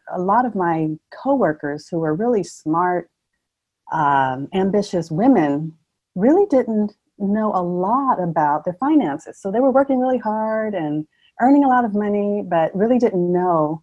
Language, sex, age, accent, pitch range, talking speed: English, female, 40-59, American, 155-200 Hz, 160 wpm